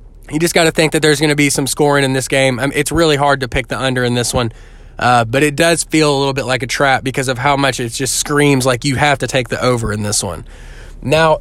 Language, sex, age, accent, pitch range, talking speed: English, male, 20-39, American, 135-170 Hz, 295 wpm